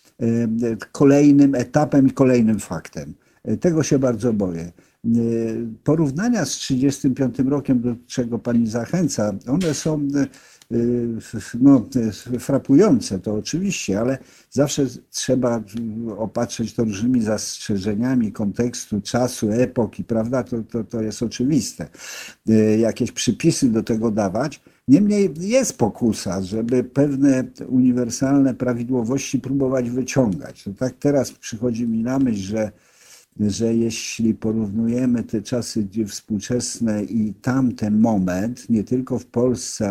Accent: native